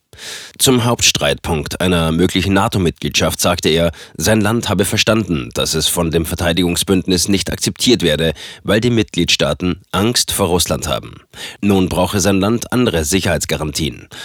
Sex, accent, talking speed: male, German, 135 wpm